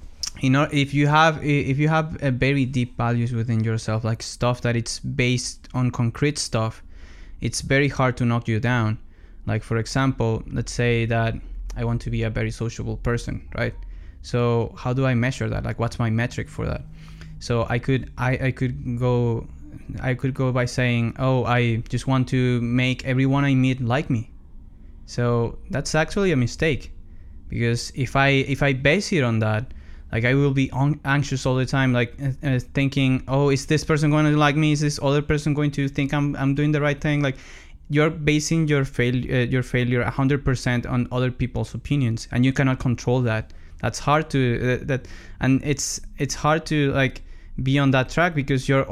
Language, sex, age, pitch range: English, male, 20-39, 115-140 Hz